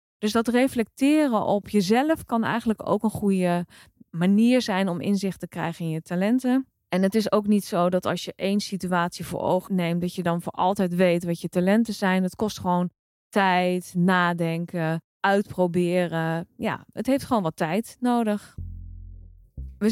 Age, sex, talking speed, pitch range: 20-39, female, 170 wpm, 180-220 Hz